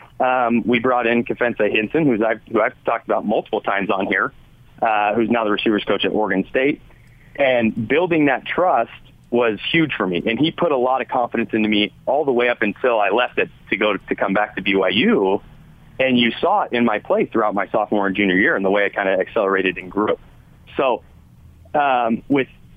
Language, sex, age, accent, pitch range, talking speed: English, male, 30-49, American, 110-145 Hz, 220 wpm